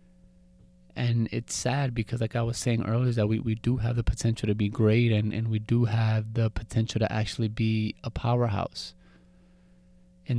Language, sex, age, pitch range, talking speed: English, male, 20-39, 105-120 Hz, 190 wpm